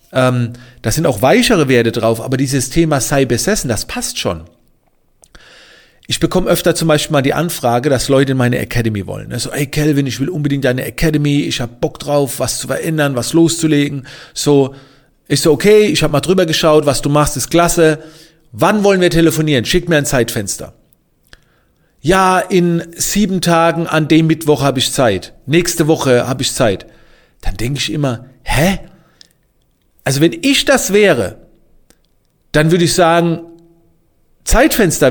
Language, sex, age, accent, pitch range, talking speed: German, male, 40-59, German, 130-170 Hz, 170 wpm